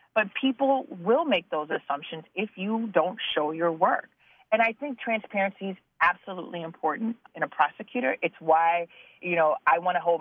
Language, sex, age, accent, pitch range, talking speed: English, female, 30-49, American, 160-230 Hz, 175 wpm